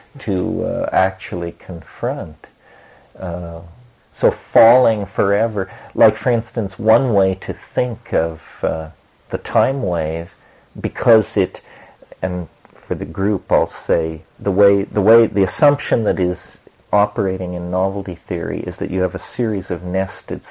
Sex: male